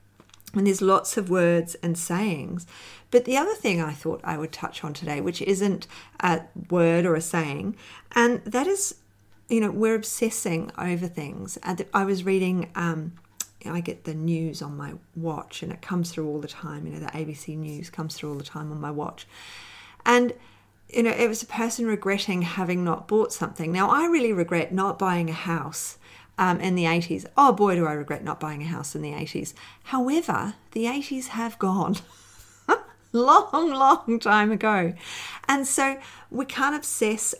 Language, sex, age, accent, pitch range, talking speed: English, female, 40-59, Australian, 160-210 Hz, 190 wpm